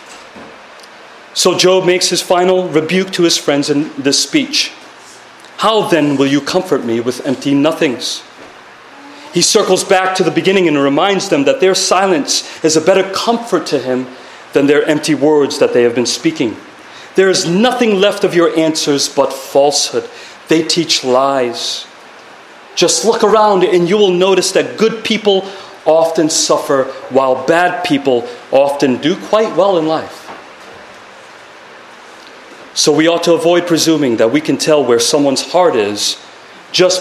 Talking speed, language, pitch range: 155 wpm, English, 140-185 Hz